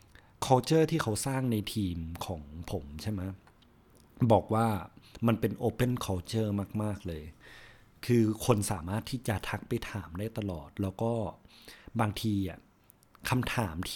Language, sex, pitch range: Thai, male, 95-120 Hz